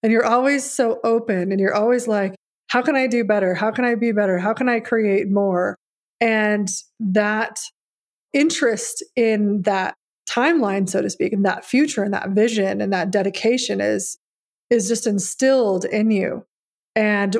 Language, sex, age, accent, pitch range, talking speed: English, female, 20-39, American, 205-240 Hz, 170 wpm